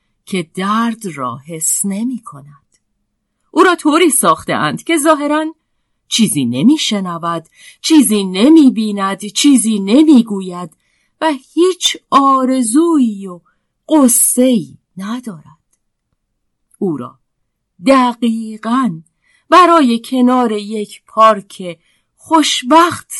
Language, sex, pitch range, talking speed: Persian, female, 185-290 Hz, 85 wpm